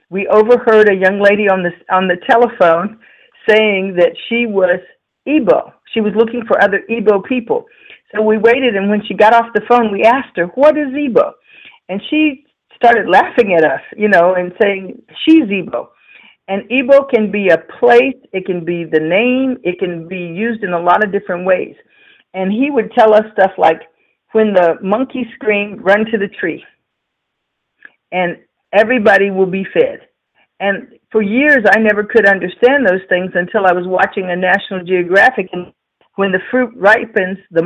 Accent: American